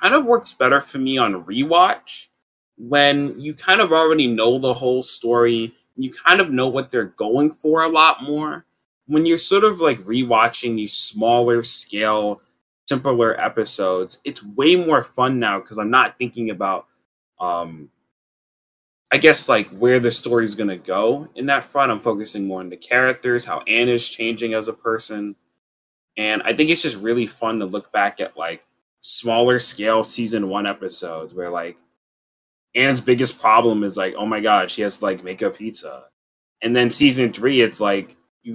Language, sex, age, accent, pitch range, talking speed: English, male, 20-39, American, 105-130 Hz, 180 wpm